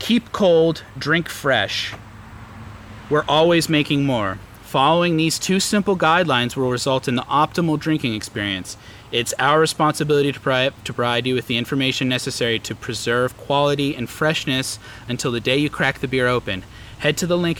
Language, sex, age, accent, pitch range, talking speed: English, male, 30-49, American, 115-145 Hz, 165 wpm